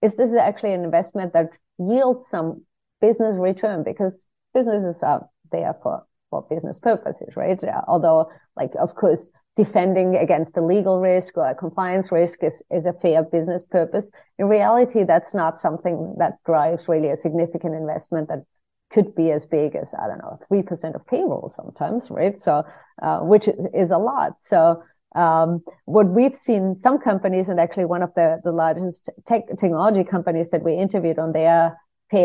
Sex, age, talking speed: female, 40-59, 170 wpm